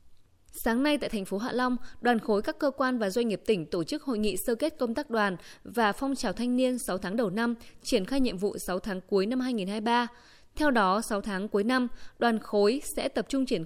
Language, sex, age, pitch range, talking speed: Vietnamese, female, 20-39, 205-255 Hz, 240 wpm